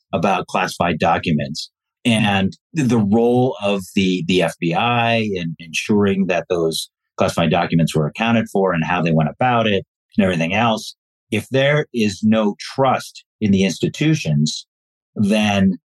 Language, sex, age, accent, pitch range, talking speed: English, male, 50-69, American, 85-115 Hz, 140 wpm